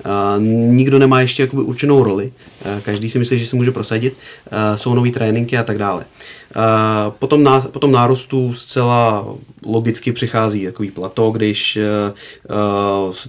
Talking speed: 135 wpm